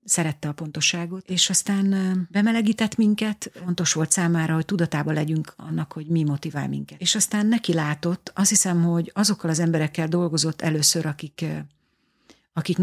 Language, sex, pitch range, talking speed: Hungarian, female, 150-175 Hz, 150 wpm